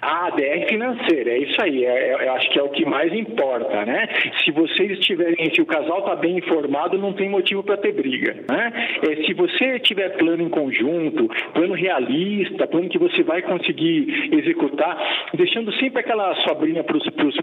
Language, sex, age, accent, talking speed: Portuguese, male, 50-69, Brazilian, 160 wpm